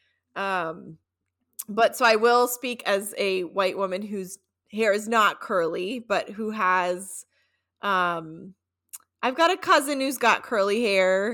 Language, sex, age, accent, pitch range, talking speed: English, female, 20-39, American, 180-225 Hz, 145 wpm